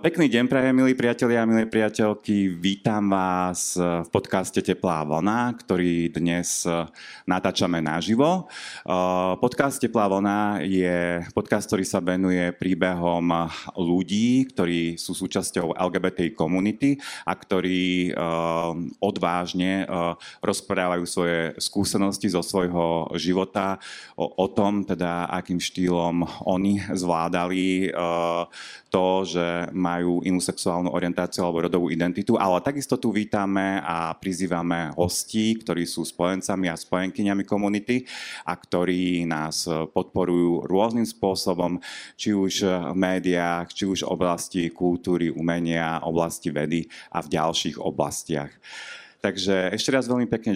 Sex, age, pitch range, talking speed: male, 30-49, 85-100 Hz, 115 wpm